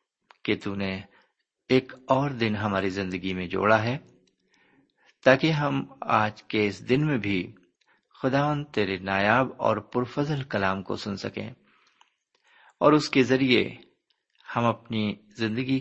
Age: 50-69